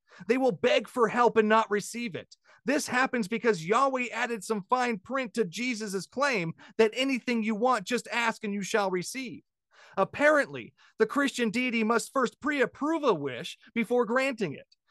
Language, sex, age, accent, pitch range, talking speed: English, male, 30-49, American, 205-250 Hz, 170 wpm